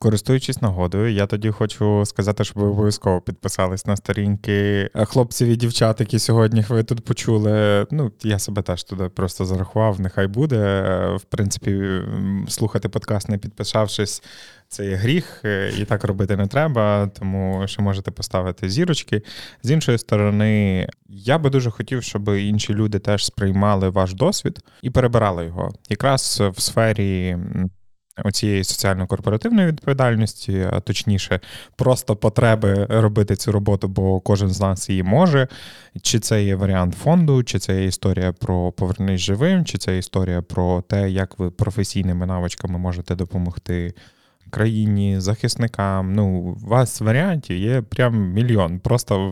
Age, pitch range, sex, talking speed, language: 20-39, 95-115 Hz, male, 140 wpm, Ukrainian